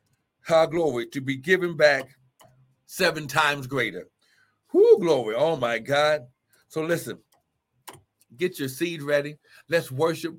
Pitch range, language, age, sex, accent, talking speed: 130-155 Hz, English, 60-79, male, American, 125 wpm